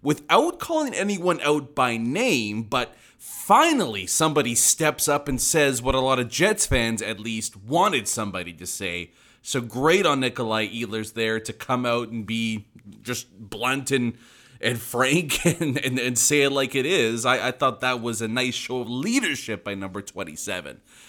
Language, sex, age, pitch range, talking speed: English, male, 30-49, 110-145 Hz, 175 wpm